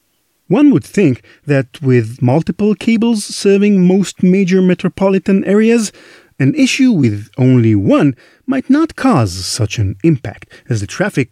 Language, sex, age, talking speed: English, male, 40-59, 140 wpm